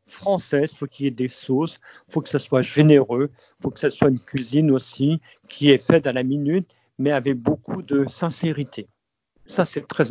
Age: 50-69